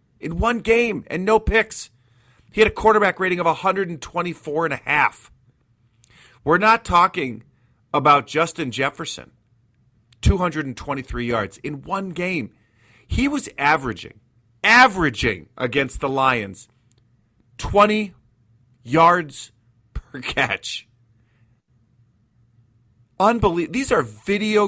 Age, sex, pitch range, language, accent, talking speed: 40-59, male, 115-140 Hz, English, American, 100 wpm